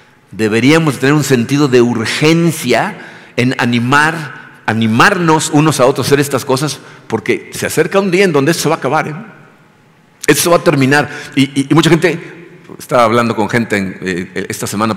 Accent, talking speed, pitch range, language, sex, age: Mexican, 190 wpm, 115-145 Hz, Spanish, male, 50-69